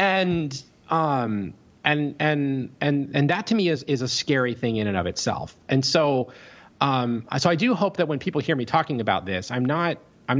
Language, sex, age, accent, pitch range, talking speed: English, male, 30-49, American, 95-130 Hz, 210 wpm